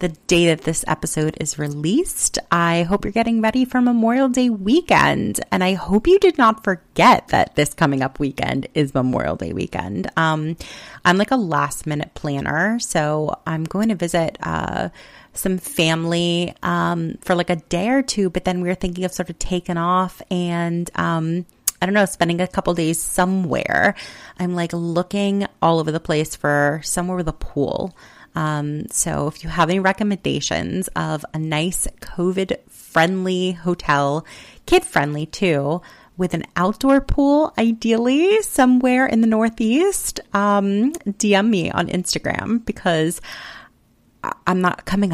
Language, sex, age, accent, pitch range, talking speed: English, female, 30-49, American, 155-210 Hz, 155 wpm